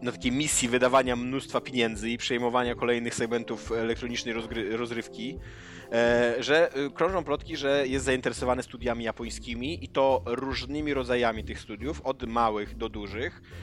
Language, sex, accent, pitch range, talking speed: Polish, male, native, 105-130 Hz, 130 wpm